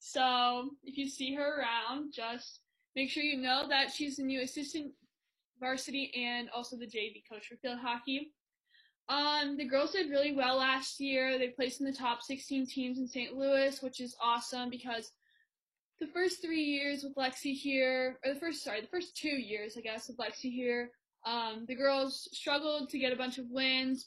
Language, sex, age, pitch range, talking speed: English, female, 10-29, 245-280 Hz, 190 wpm